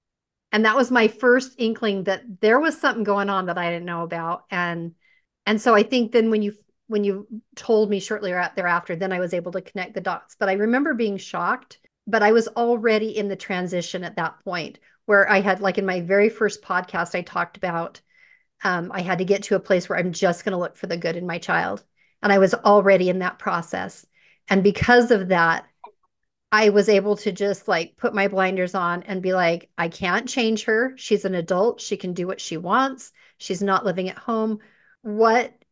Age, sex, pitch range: 40-59, female, 185-225 Hz